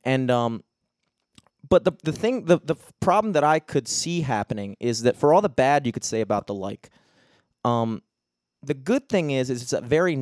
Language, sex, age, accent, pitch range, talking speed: English, male, 30-49, American, 120-150 Hz, 205 wpm